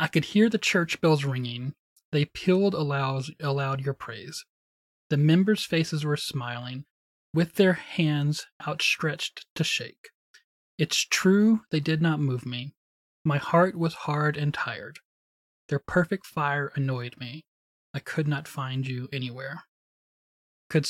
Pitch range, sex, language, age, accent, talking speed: 135-165 Hz, male, English, 20-39, American, 140 wpm